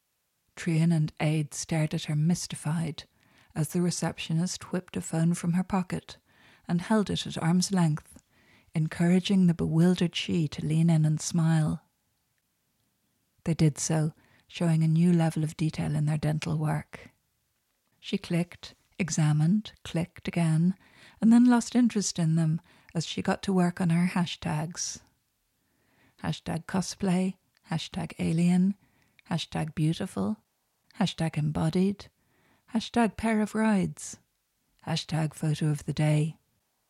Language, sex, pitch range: English, female, 155-180 Hz